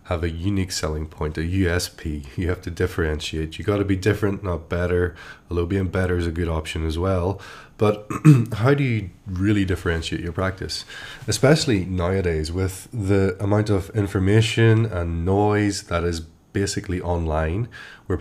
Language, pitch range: English, 85-100 Hz